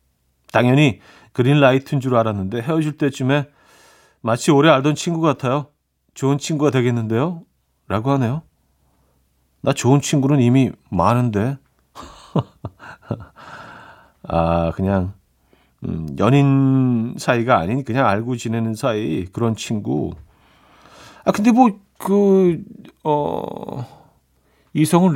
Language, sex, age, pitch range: Korean, male, 40-59, 100-150 Hz